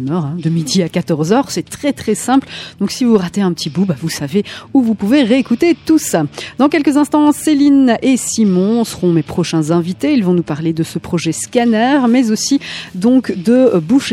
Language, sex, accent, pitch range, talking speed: French, female, French, 180-255 Hz, 205 wpm